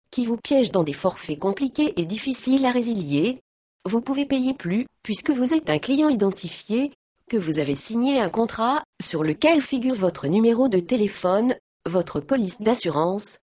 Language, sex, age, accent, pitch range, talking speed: French, female, 40-59, French, 175-260 Hz, 165 wpm